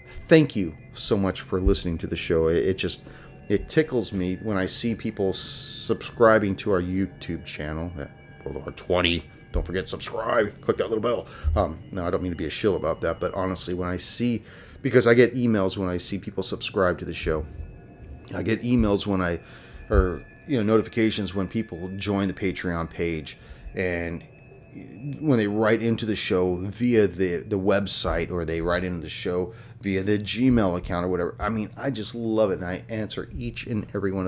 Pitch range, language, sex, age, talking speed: 90-110 Hz, English, male, 30-49, 195 wpm